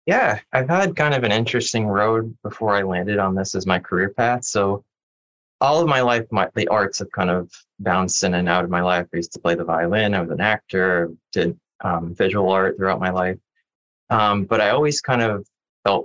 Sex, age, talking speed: male, 20-39, 215 wpm